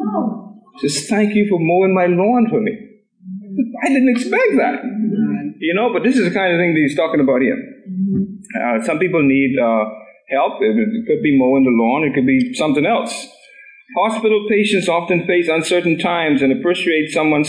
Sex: male